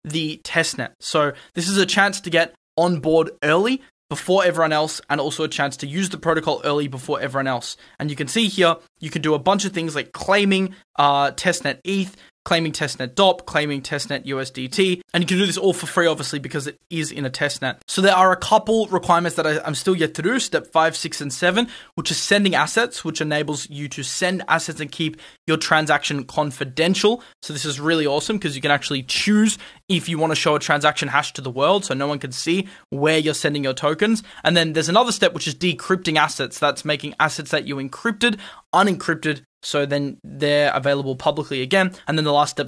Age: 20-39